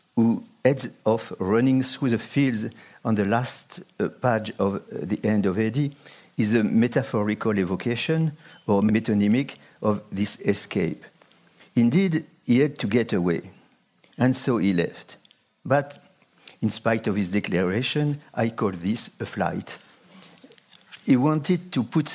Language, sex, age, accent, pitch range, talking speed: English, male, 50-69, French, 105-140 Hz, 140 wpm